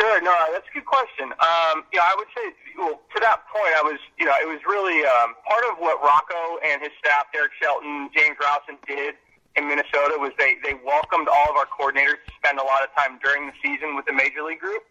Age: 30-49